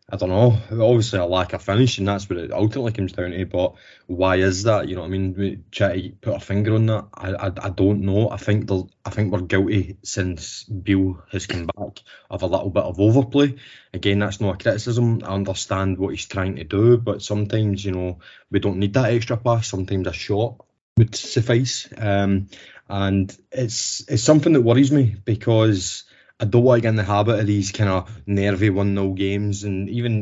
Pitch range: 95-110 Hz